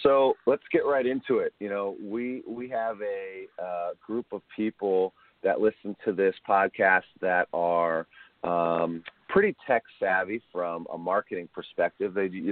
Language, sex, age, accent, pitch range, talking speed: English, male, 40-59, American, 85-110 Hz, 155 wpm